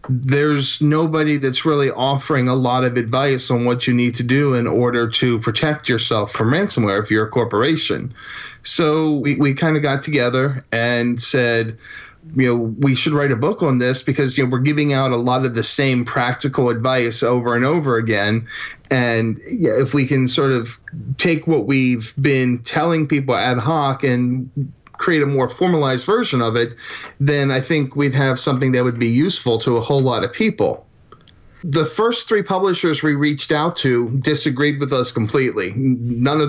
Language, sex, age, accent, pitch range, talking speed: English, male, 30-49, American, 120-145 Hz, 185 wpm